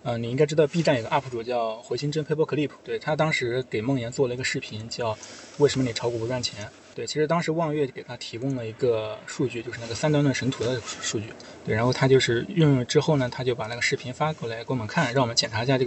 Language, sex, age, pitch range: Chinese, male, 20-39, 115-145 Hz